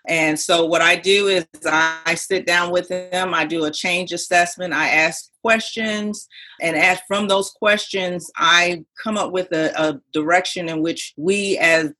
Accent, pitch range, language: American, 170-210 Hz, English